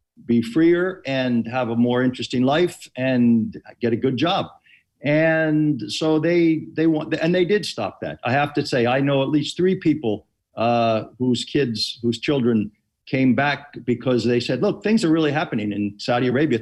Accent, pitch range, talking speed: American, 125-165 Hz, 185 wpm